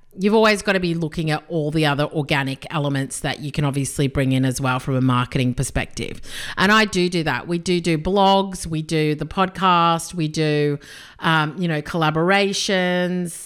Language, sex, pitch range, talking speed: English, female, 145-195 Hz, 190 wpm